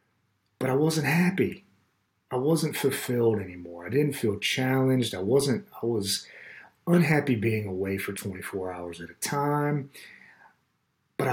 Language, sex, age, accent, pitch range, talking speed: English, male, 40-59, American, 105-140 Hz, 140 wpm